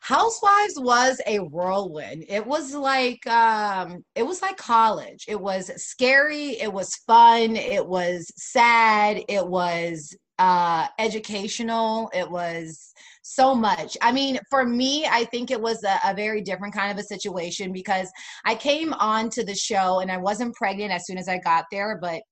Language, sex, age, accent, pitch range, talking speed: English, female, 20-39, American, 180-235 Hz, 170 wpm